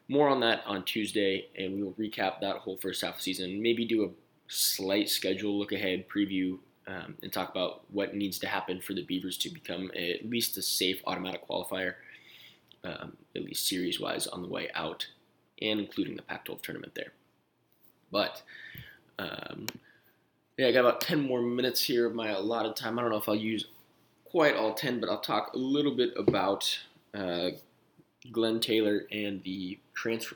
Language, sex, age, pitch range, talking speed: English, male, 20-39, 95-110 Hz, 185 wpm